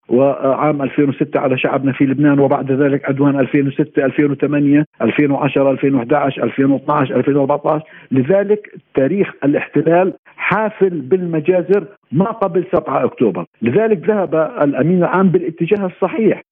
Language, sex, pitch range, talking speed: Arabic, male, 140-170 Hz, 90 wpm